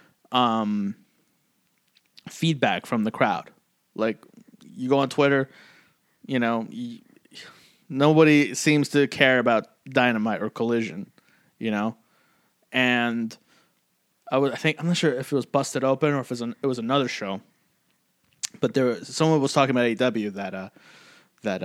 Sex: male